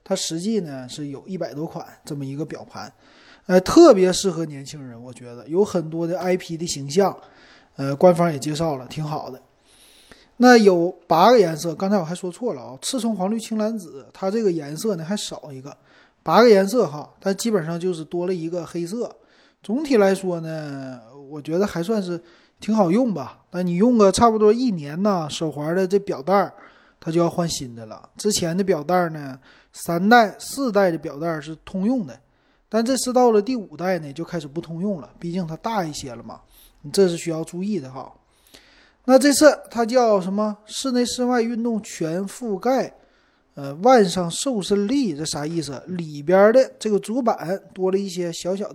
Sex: male